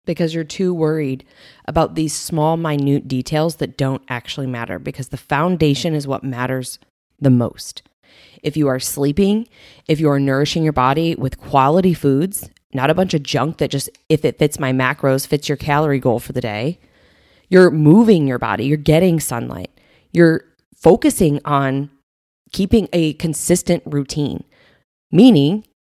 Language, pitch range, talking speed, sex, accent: English, 140-175 Hz, 155 wpm, female, American